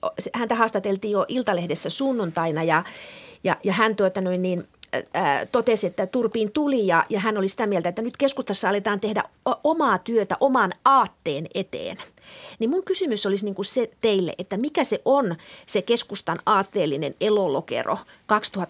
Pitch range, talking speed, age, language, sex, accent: 185-225 Hz, 150 wpm, 30-49, Finnish, female, native